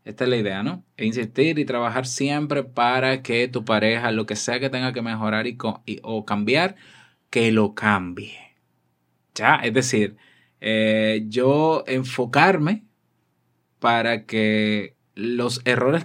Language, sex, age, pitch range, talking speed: Spanish, male, 20-39, 110-150 Hz, 130 wpm